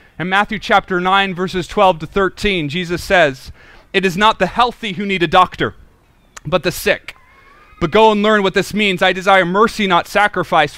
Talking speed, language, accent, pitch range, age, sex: 190 wpm, English, American, 195-260 Hz, 30-49, male